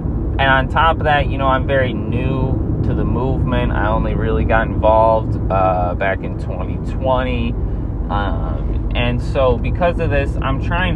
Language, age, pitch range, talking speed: English, 20-39, 100-130 Hz, 165 wpm